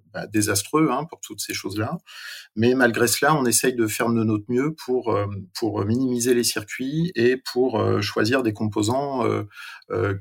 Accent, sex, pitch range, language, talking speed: French, male, 105-120 Hz, French, 180 wpm